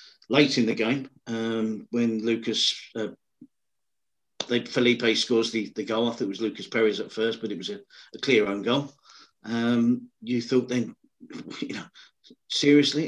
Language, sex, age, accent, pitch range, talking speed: English, male, 40-59, British, 110-125 Hz, 165 wpm